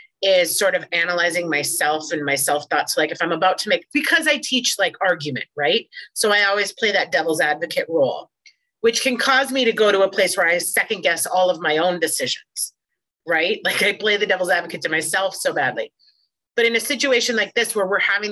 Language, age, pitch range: English, 30-49, 185-275 Hz